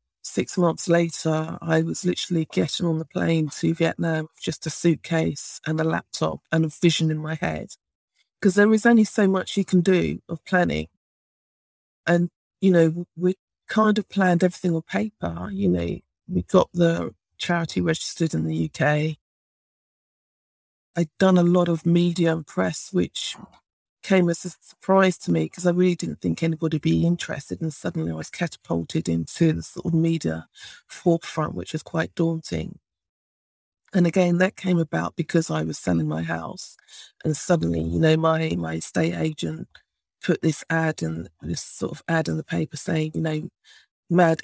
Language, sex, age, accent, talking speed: English, female, 50-69, British, 175 wpm